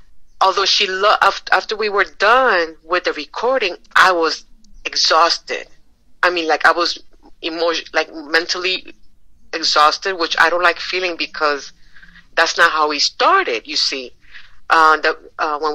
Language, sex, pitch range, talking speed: English, female, 160-225 Hz, 145 wpm